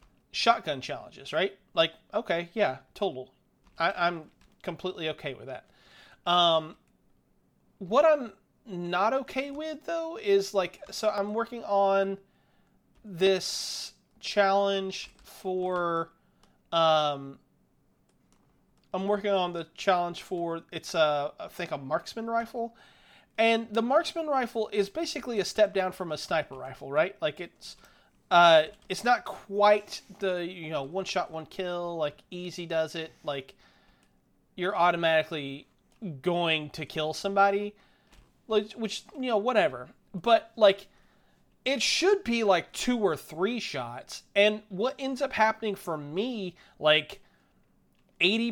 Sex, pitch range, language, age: male, 170-220 Hz, English, 30-49